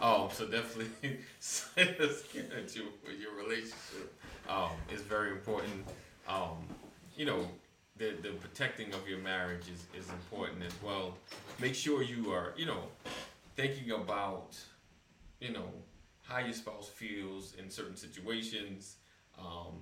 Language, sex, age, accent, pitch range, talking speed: English, male, 30-49, American, 95-120 Hz, 125 wpm